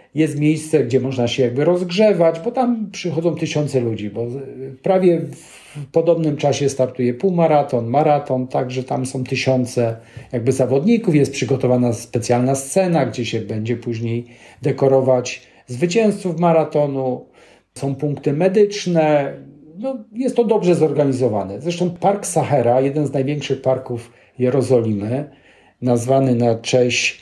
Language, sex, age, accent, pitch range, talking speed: Polish, male, 50-69, native, 125-160 Hz, 120 wpm